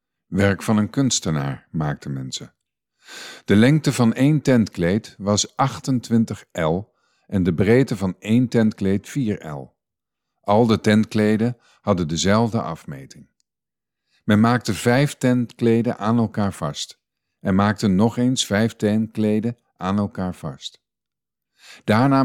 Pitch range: 95-120 Hz